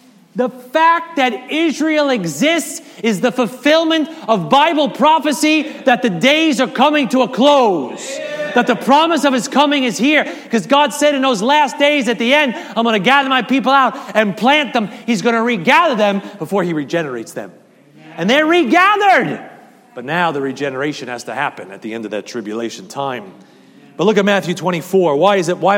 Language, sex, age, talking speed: English, male, 30-49, 185 wpm